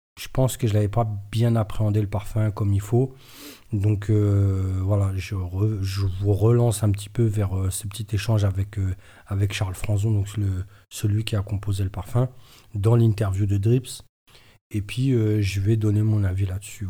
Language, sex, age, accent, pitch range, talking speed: French, male, 40-59, French, 100-115 Hz, 195 wpm